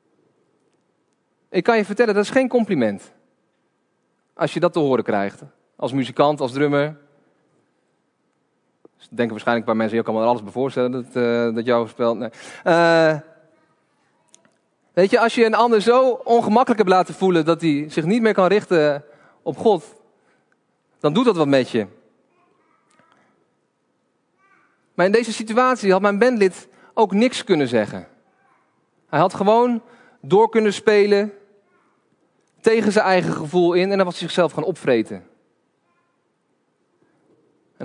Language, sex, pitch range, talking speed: Dutch, male, 145-215 Hz, 145 wpm